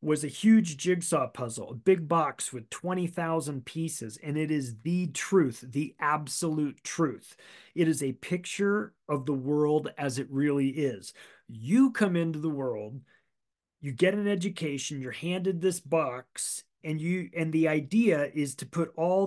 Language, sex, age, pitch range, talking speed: English, male, 30-49, 140-185 Hz, 160 wpm